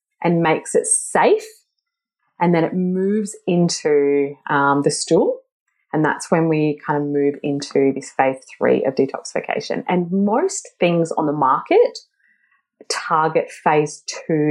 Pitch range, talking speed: 145-200 Hz, 140 wpm